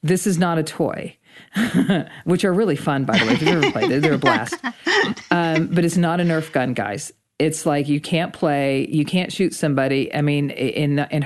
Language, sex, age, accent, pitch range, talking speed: English, female, 40-59, American, 145-180 Hz, 205 wpm